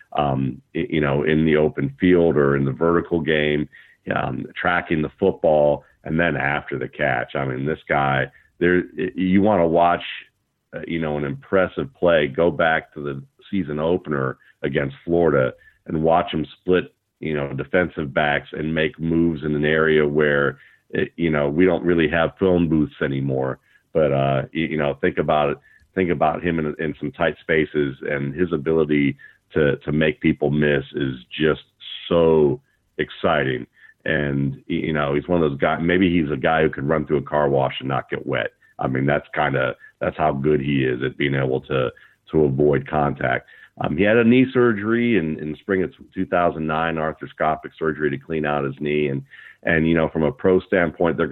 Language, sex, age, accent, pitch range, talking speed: English, male, 40-59, American, 70-85 Hz, 190 wpm